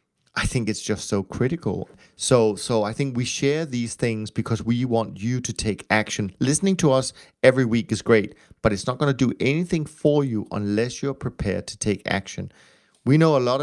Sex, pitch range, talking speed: male, 105-130 Hz, 205 wpm